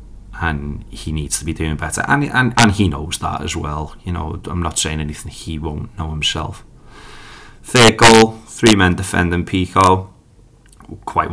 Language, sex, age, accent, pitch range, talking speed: English, male, 20-39, British, 85-100 Hz, 170 wpm